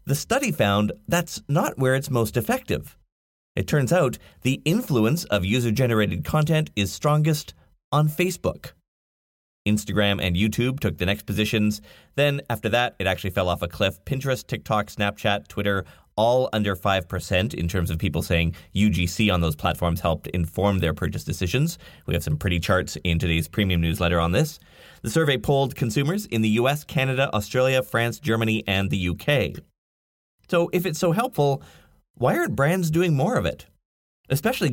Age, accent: 30-49, American